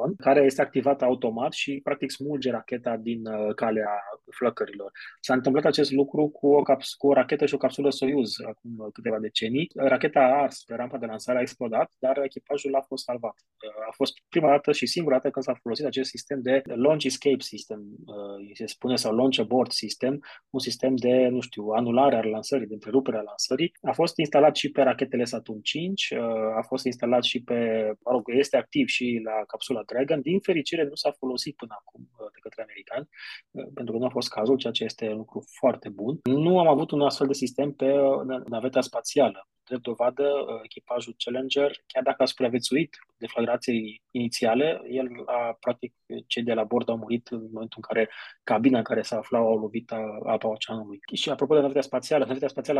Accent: native